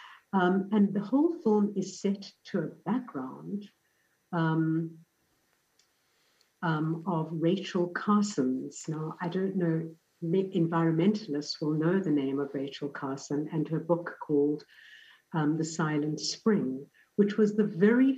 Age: 60-79